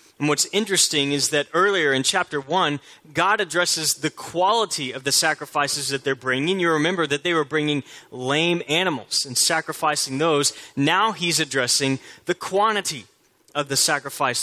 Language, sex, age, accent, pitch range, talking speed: English, male, 30-49, American, 125-160 Hz, 160 wpm